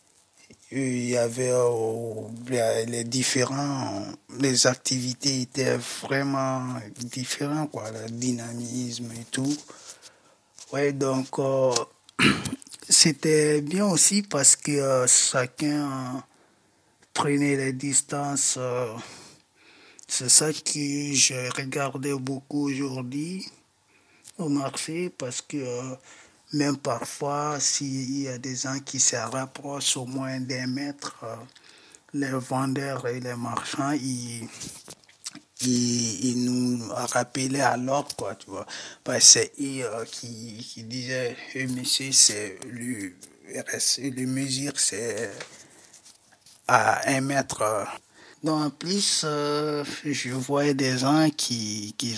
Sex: male